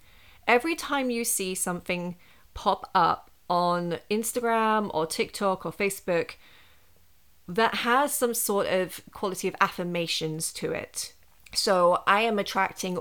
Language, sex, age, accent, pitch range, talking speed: English, female, 30-49, British, 175-220 Hz, 125 wpm